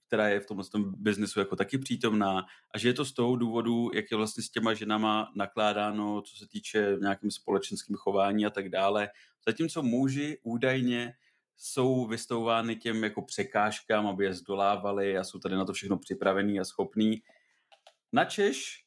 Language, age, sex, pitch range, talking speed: Czech, 30-49, male, 100-120 Hz, 170 wpm